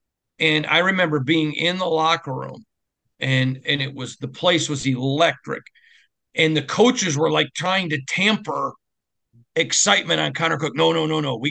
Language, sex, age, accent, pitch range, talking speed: English, male, 50-69, American, 135-175 Hz, 170 wpm